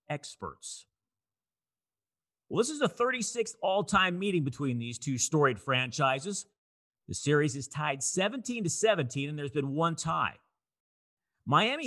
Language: English